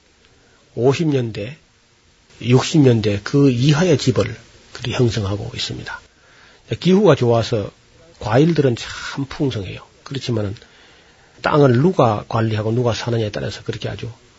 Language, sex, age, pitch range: Korean, male, 40-59, 110-135 Hz